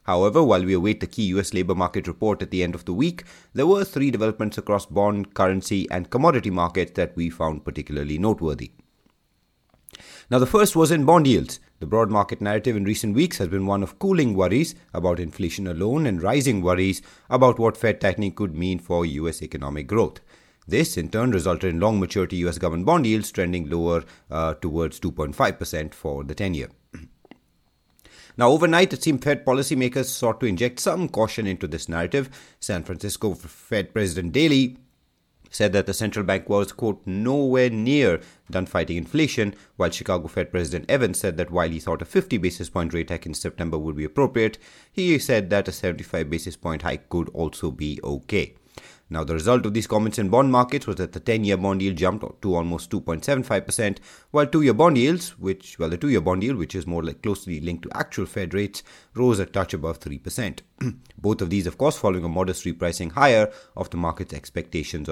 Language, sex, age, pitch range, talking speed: English, male, 30-49, 85-115 Hz, 195 wpm